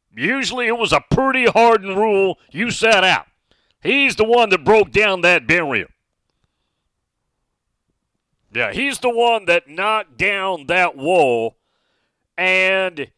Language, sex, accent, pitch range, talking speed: English, male, American, 150-220 Hz, 125 wpm